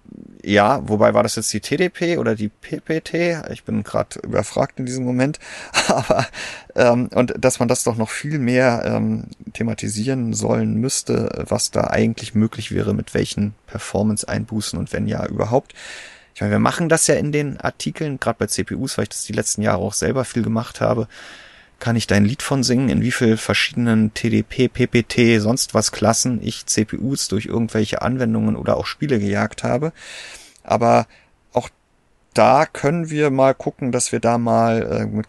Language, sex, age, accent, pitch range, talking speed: German, male, 30-49, German, 110-135 Hz, 175 wpm